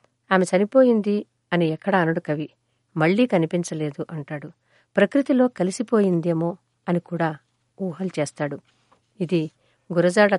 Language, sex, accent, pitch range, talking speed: Telugu, female, native, 165-205 Hz, 100 wpm